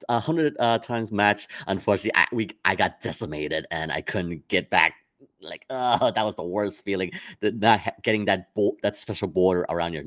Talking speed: 205 wpm